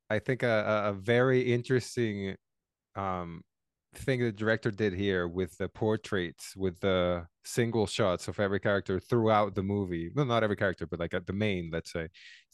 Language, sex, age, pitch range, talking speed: English, male, 20-39, 100-125 Hz, 170 wpm